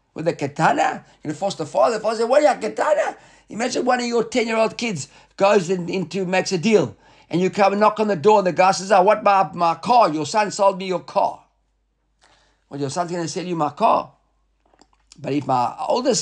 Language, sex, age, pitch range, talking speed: English, male, 50-69, 140-195 Hz, 245 wpm